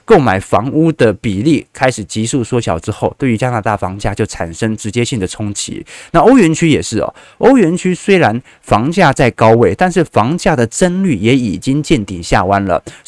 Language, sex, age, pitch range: Chinese, male, 20-39, 110-150 Hz